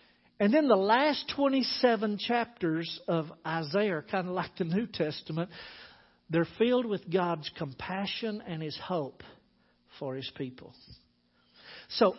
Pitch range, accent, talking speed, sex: 165-235 Hz, American, 135 wpm, male